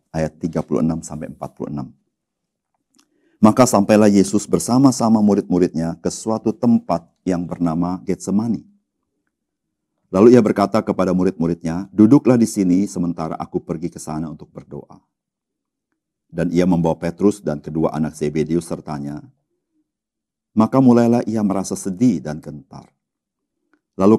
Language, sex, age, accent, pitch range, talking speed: Indonesian, male, 50-69, native, 85-110 Hz, 110 wpm